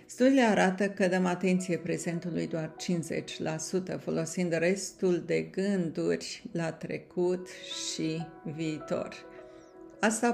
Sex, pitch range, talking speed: female, 165-190 Hz, 100 wpm